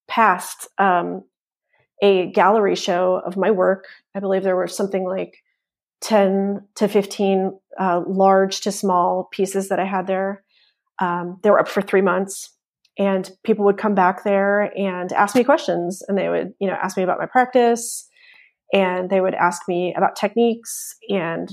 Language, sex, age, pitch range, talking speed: English, female, 30-49, 190-225 Hz, 170 wpm